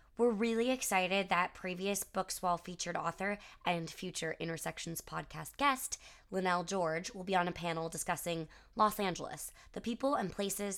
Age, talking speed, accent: 20-39, 150 wpm, American